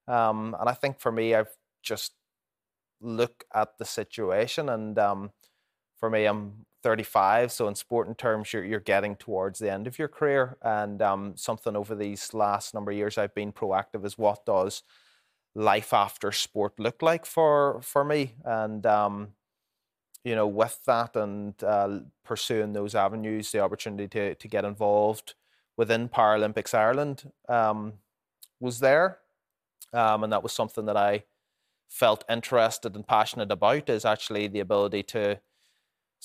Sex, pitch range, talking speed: male, 100-115 Hz, 155 wpm